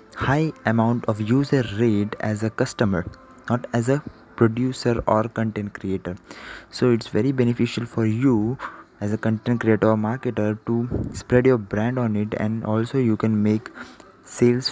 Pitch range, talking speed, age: 105-125 Hz, 155 wpm, 20-39